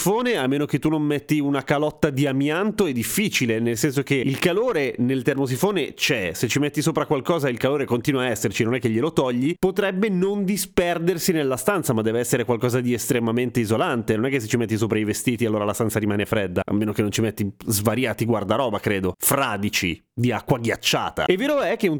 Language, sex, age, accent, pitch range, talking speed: Italian, male, 30-49, native, 120-155 Hz, 215 wpm